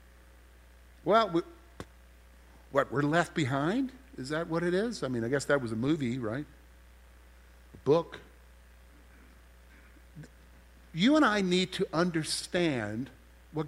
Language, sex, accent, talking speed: English, male, American, 125 wpm